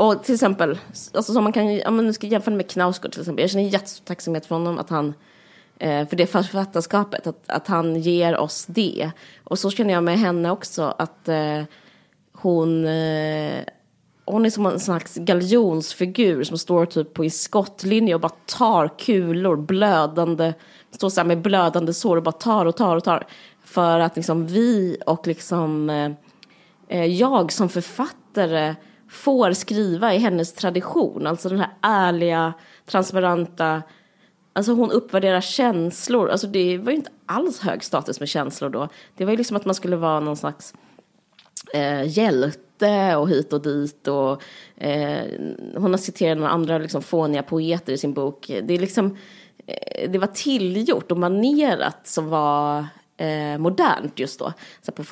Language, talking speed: Swedish, 155 wpm